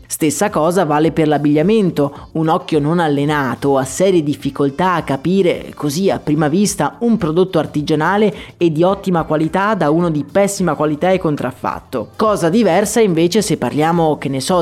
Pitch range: 145-190 Hz